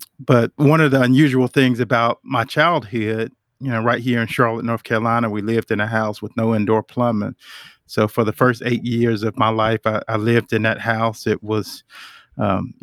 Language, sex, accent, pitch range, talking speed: English, male, American, 110-120 Hz, 205 wpm